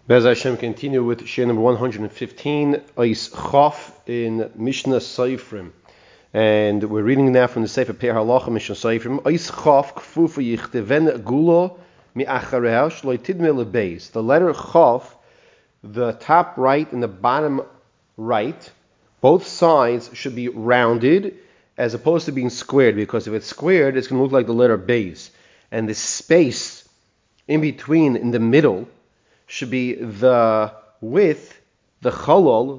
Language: English